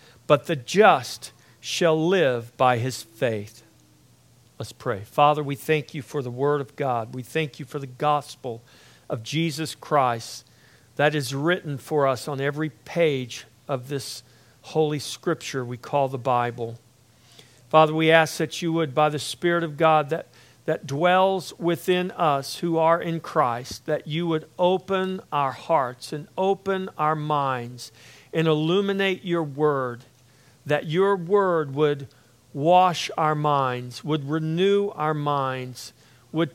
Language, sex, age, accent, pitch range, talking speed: English, male, 50-69, American, 130-160 Hz, 150 wpm